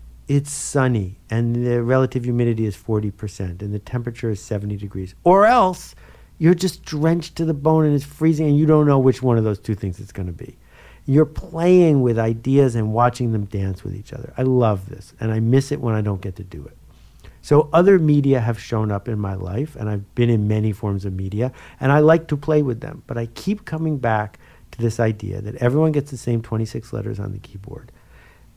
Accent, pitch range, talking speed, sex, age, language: American, 105-140 Hz, 225 wpm, male, 50-69, English